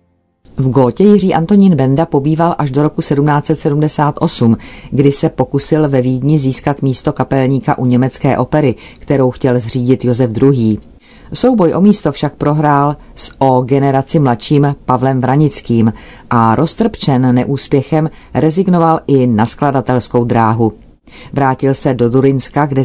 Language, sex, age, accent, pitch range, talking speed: Czech, female, 40-59, native, 125-155 Hz, 130 wpm